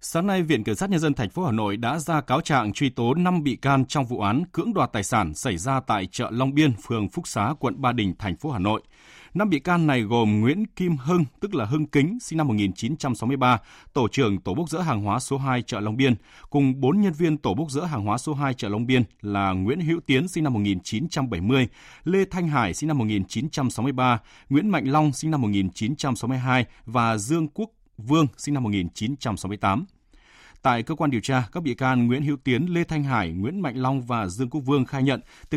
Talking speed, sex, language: 225 wpm, male, Vietnamese